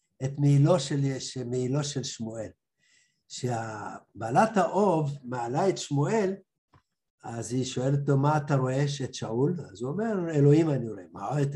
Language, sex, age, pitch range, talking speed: Hebrew, male, 60-79, 130-180 Hz, 140 wpm